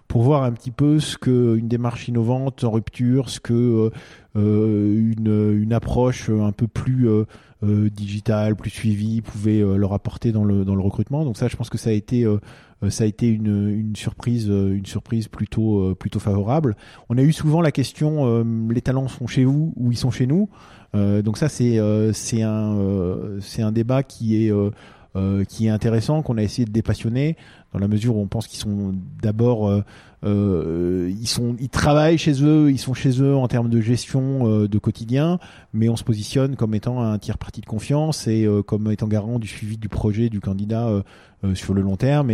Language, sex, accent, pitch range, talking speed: French, male, French, 100-120 Hz, 215 wpm